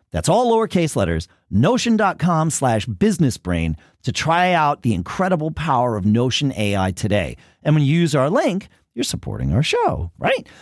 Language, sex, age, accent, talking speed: English, male, 40-59, American, 165 wpm